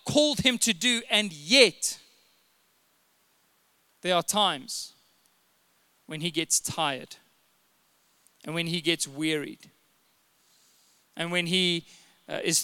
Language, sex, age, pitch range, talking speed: English, male, 20-39, 175-220 Hz, 110 wpm